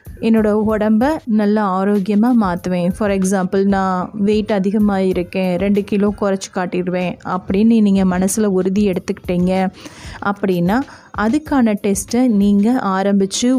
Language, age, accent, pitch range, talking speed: Tamil, 30-49, native, 195-225 Hz, 110 wpm